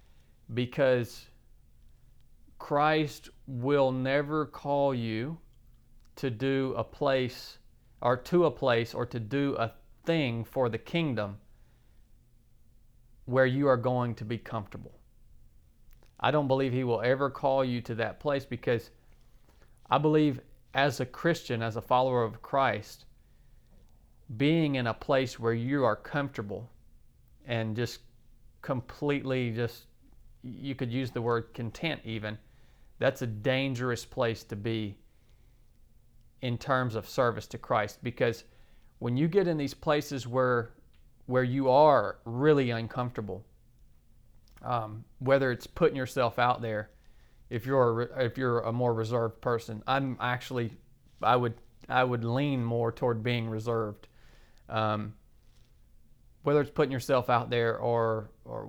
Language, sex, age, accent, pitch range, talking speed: English, male, 40-59, American, 115-135 Hz, 135 wpm